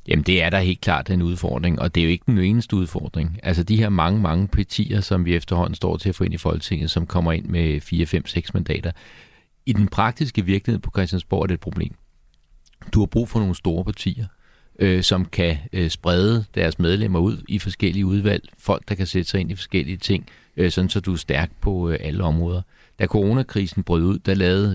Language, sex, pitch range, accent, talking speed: Danish, male, 85-100 Hz, native, 220 wpm